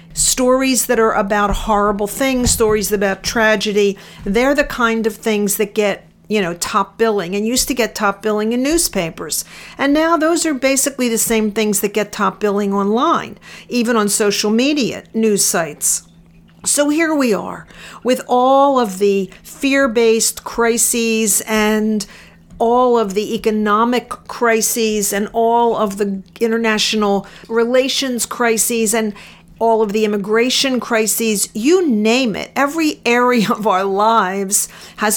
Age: 50-69